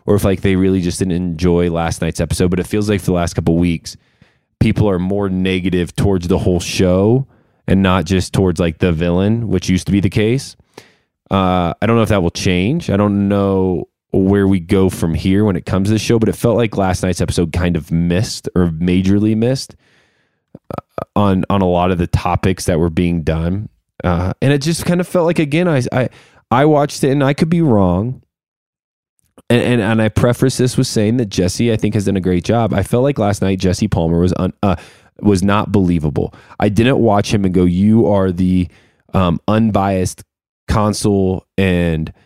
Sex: male